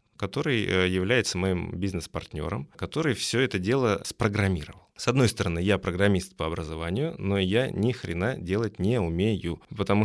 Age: 20-39